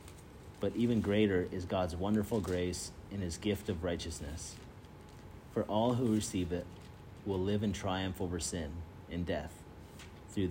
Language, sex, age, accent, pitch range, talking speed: English, male, 30-49, American, 85-100 Hz, 150 wpm